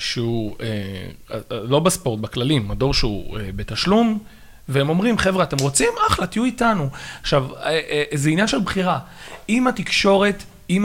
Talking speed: 135 wpm